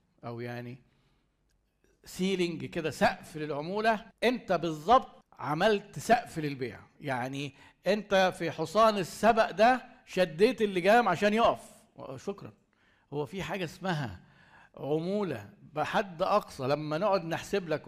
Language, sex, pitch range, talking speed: Arabic, male, 145-195 Hz, 110 wpm